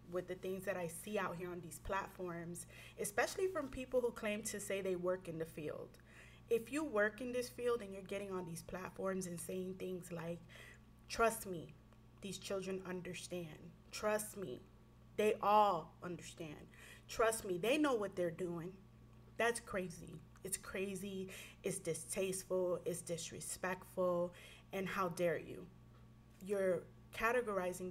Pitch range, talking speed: 175-215 Hz, 150 wpm